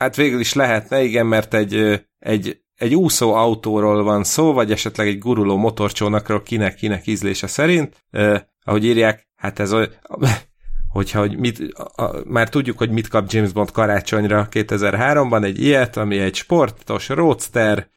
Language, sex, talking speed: Hungarian, male, 155 wpm